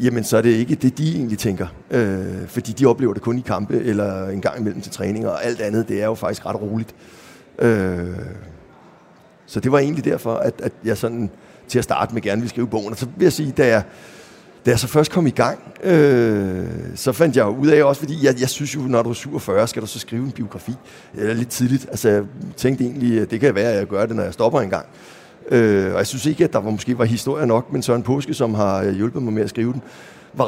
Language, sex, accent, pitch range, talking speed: Danish, male, native, 110-145 Hz, 255 wpm